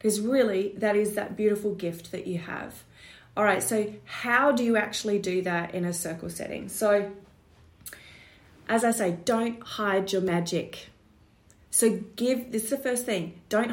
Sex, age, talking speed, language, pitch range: female, 30-49, 165 wpm, English, 180-230 Hz